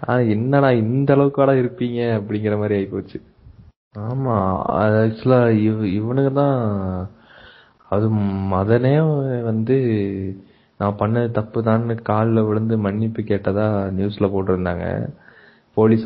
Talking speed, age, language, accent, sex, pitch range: 75 wpm, 20-39, Tamil, native, male, 100-115 Hz